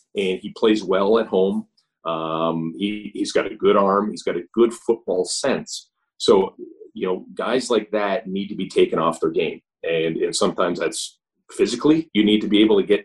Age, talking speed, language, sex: 40-59, 200 wpm, English, male